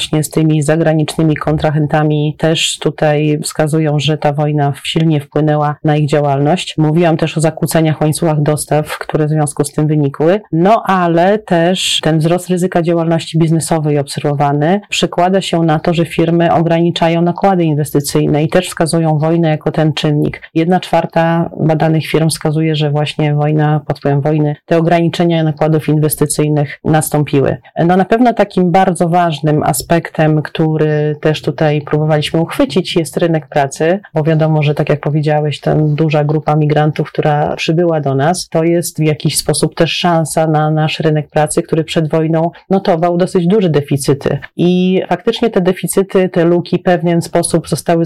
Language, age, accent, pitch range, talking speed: Polish, 30-49, native, 150-170 Hz, 160 wpm